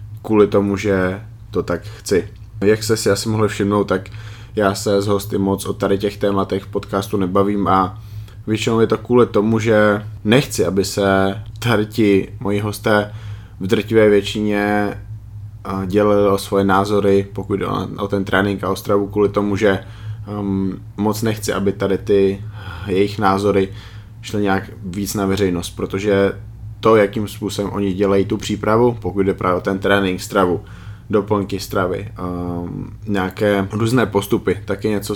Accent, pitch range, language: native, 95-105 Hz, Czech